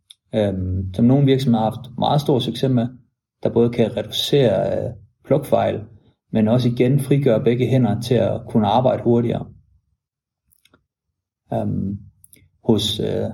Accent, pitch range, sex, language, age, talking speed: Danish, 110-130 Hz, male, English, 30-49, 115 wpm